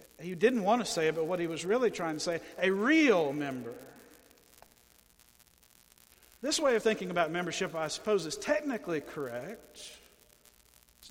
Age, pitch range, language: 50-69, 140-195 Hz, English